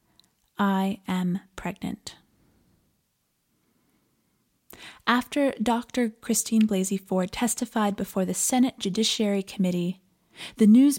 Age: 20-39